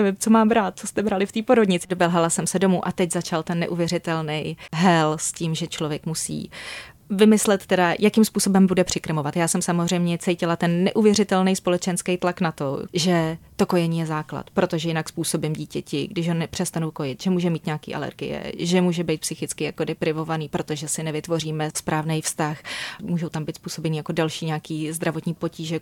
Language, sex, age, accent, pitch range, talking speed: Czech, female, 30-49, native, 160-190 Hz, 180 wpm